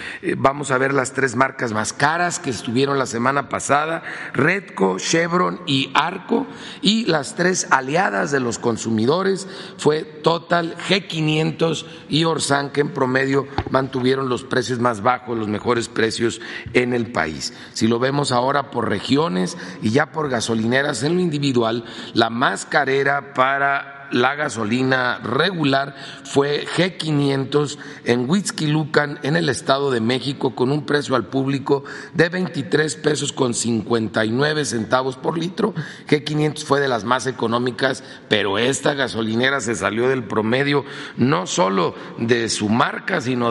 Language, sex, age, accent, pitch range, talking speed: Spanish, male, 40-59, Mexican, 120-150 Hz, 145 wpm